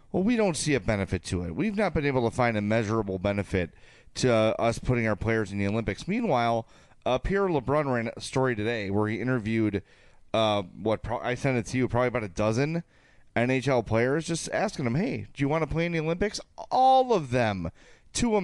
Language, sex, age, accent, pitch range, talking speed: English, male, 30-49, American, 105-145 Hz, 220 wpm